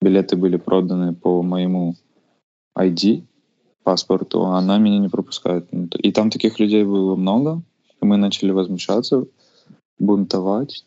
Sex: male